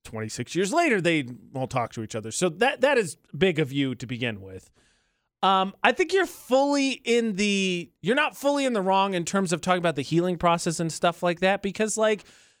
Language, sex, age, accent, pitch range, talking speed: English, male, 30-49, American, 145-205 Hz, 215 wpm